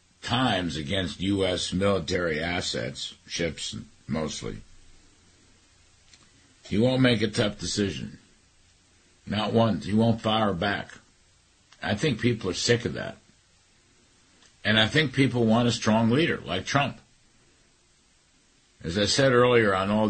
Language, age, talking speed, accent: English, 60-79, 125 wpm, American